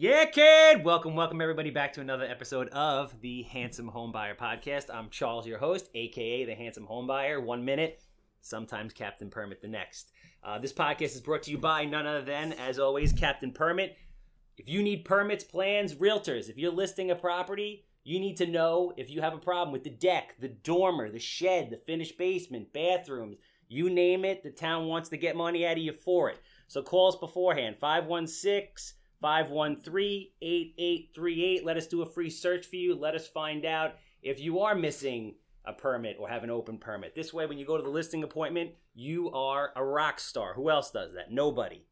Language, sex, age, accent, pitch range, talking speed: English, male, 30-49, American, 140-180 Hz, 200 wpm